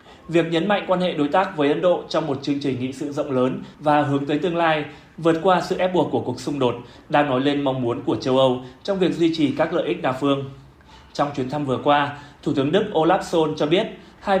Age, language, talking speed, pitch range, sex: 20-39, Vietnamese, 260 wpm, 135-165 Hz, male